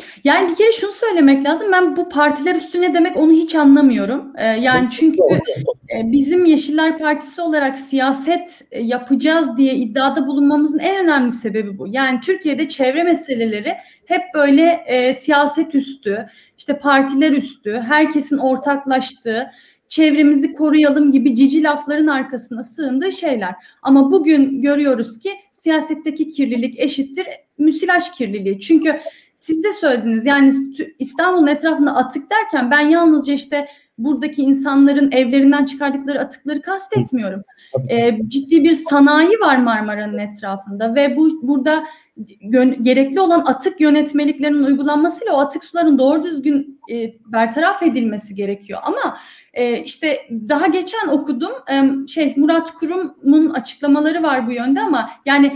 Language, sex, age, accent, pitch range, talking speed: German, female, 30-49, Turkish, 260-315 Hz, 130 wpm